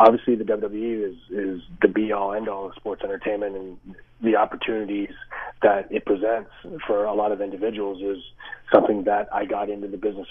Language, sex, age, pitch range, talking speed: English, male, 30-49, 105-130 Hz, 175 wpm